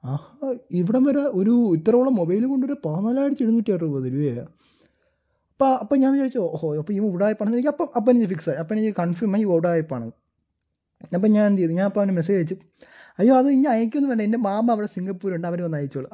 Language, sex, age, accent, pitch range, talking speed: Malayalam, male, 20-39, native, 170-235 Hz, 185 wpm